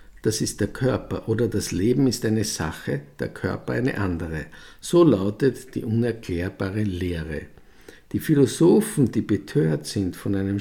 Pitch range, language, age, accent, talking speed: 105-140 Hz, German, 50-69, Austrian, 145 wpm